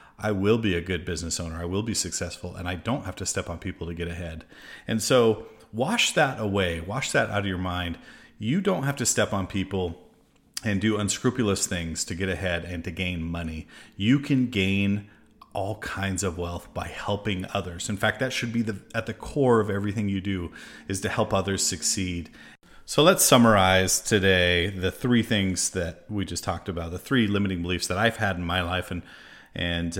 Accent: American